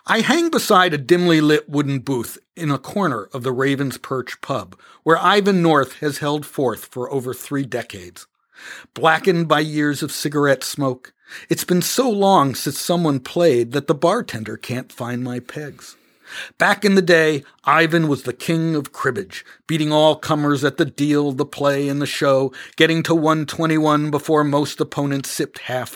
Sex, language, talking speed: male, English, 175 wpm